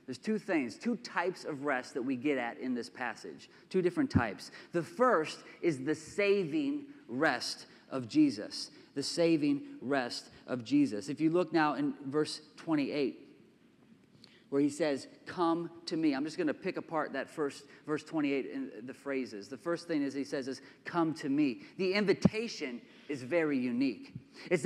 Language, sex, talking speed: English, male, 175 wpm